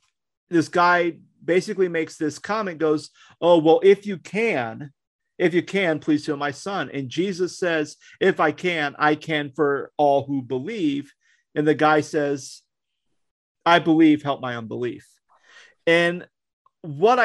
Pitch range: 145-185 Hz